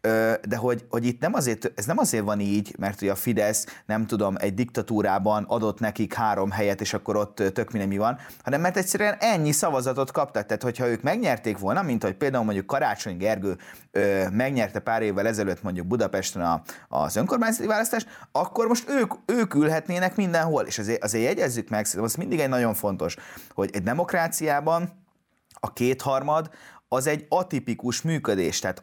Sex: male